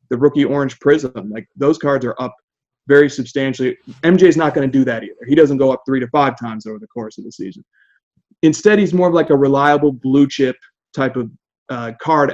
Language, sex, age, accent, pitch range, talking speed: English, male, 30-49, American, 130-150 Hz, 220 wpm